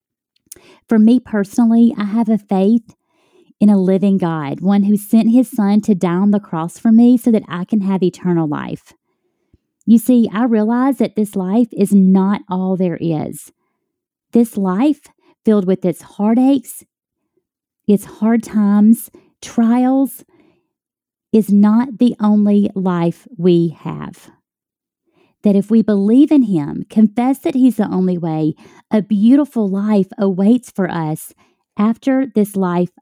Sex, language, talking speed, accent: female, English, 145 wpm, American